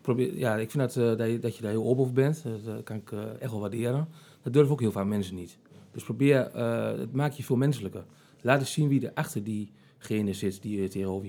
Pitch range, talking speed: 110-135 Hz, 255 wpm